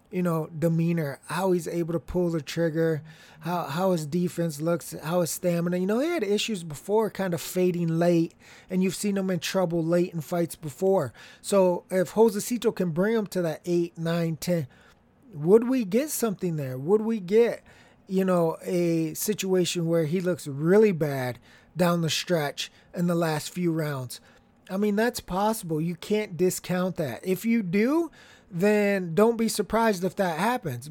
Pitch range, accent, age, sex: 170-215 Hz, American, 20-39, male